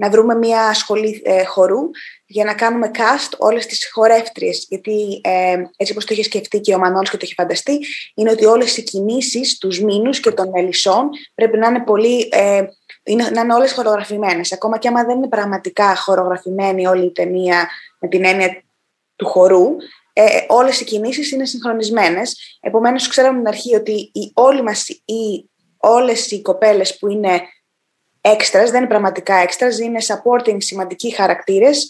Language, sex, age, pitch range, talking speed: Greek, female, 20-39, 200-245 Hz, 170 wpm